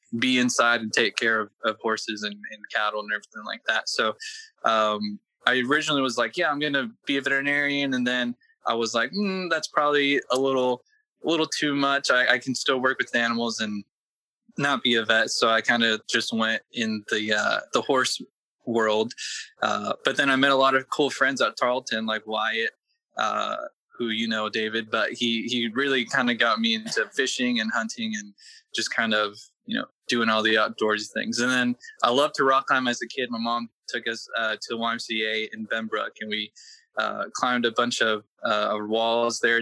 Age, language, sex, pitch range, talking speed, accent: 20-39, English, male, 110-140 Hz, 210 wpm, American